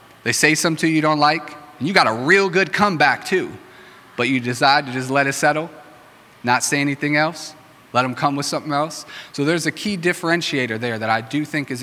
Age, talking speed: 30-49, 225 wpm